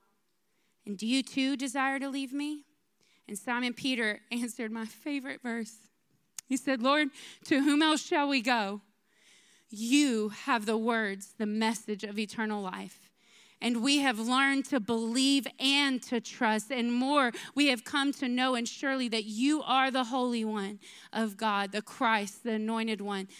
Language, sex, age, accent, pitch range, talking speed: English, female, 20-39, American, 215-250 Hz, 165 wpm